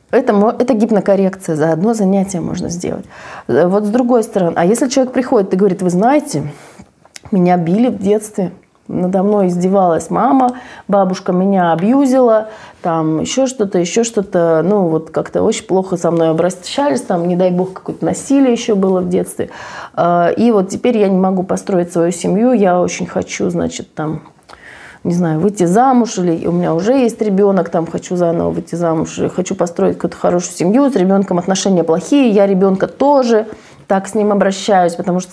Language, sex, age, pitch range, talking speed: Russian, female, 30-49, 170-215 Hz, 170 wpm